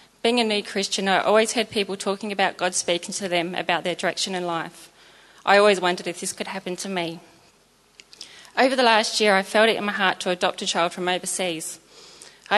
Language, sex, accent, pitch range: English, female, Australian, 180-210 Hz